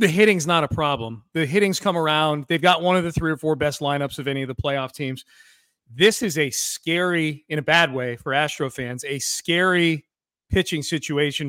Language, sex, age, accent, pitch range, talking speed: English, male, 40-59, American, 150-185 Hz, 210 wpm